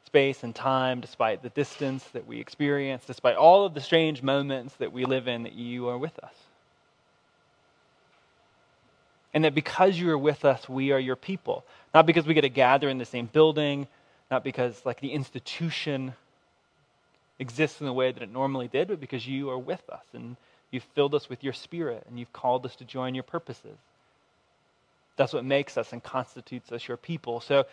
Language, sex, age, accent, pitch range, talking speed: English, male, 20-39, American, 125-145 Hz, 195 wpm